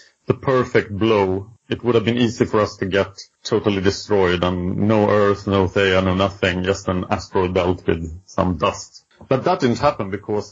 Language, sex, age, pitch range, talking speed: English, male, 40-59, 100-125 Hz, 190 wpm